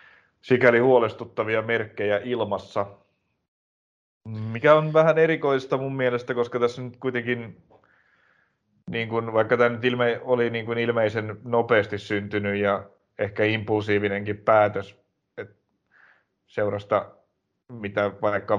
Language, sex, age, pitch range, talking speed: Finnish, male, 30-49, 100-110 Hz, 110 wpm